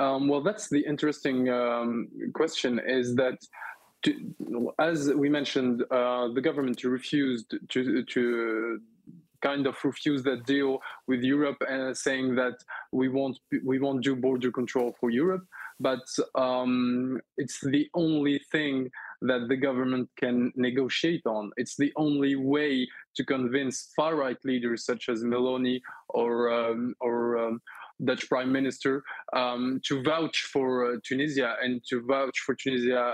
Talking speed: 145 wpm